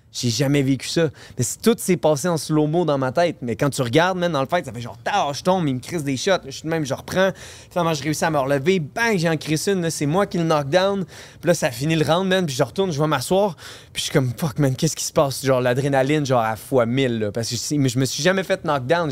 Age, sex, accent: 20-39, male, Canadian